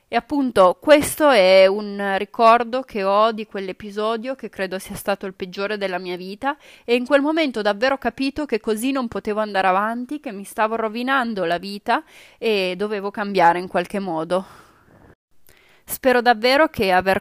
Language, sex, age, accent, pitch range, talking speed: Italian, female, 30-49, native, 195-250 Hz, 165 wpm